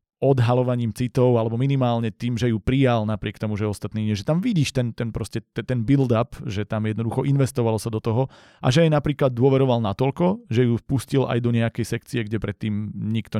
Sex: male